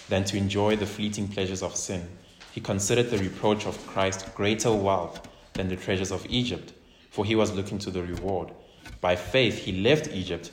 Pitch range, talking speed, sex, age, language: 90-105 Hz, 190 wpm, male, 20-39, English